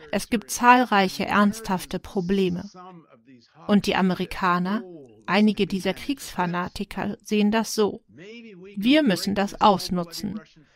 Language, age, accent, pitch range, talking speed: English, 40-59, German, 185-215 Hz, 100 wpm